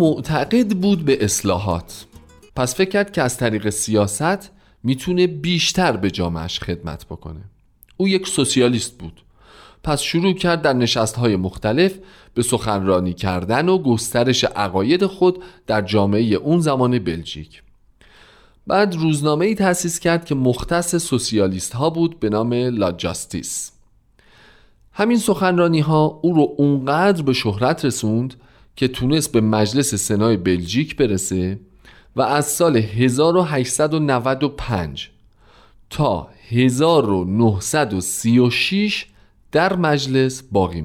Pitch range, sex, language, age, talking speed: 105-160 Hz, male, Persian, 40-59, 115 wpm